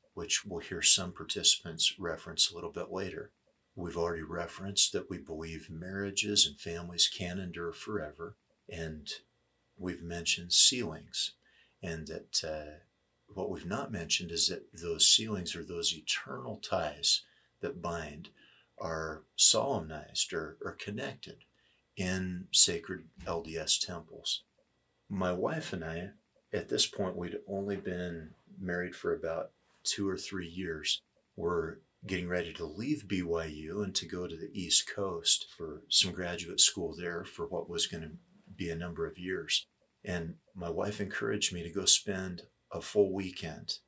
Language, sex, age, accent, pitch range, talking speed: English, male, 50-69, American, 85-95 Hz, 145 wpm